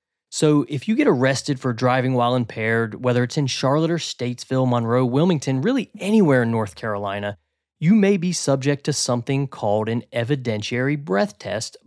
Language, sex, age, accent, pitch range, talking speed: English, male, 30-49, American, 115-145 Hz, 165 wpm